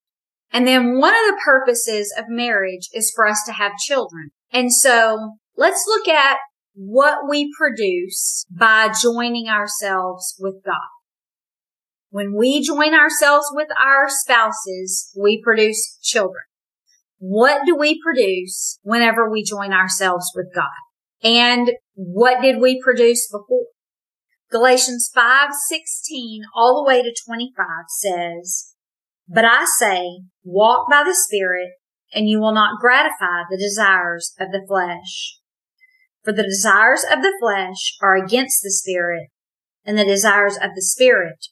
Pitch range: 190-260 Hz